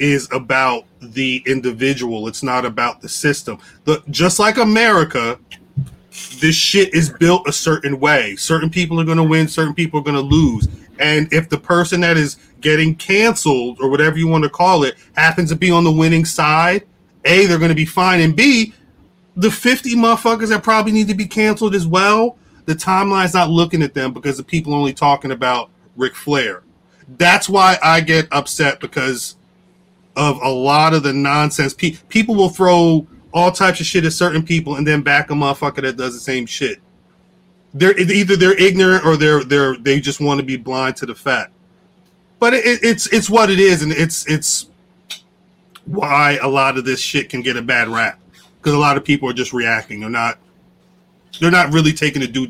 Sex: male